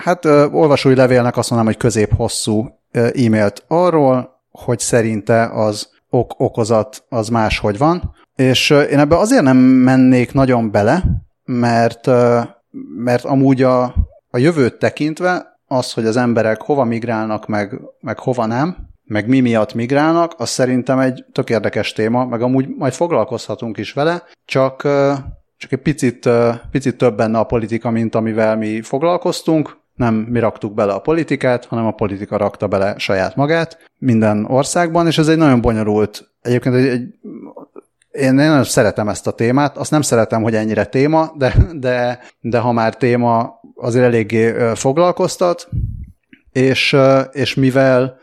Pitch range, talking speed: 115-135 Hz, 145 wpm